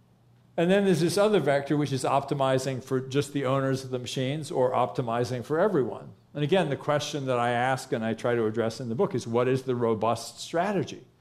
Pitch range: 120-155 Hz